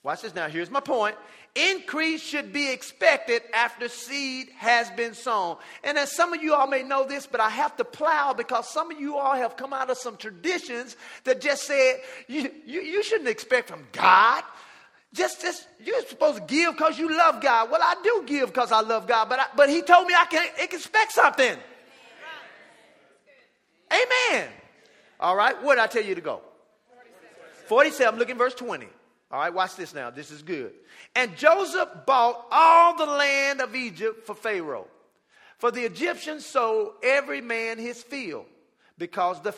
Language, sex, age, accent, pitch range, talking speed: English, male, 40-59, American, 235-330 Hz, 180 wpm